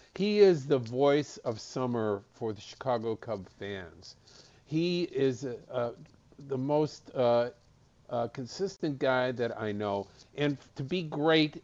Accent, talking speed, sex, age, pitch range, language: American, 135 wpm, male, 50-69, 110-135 Hz, English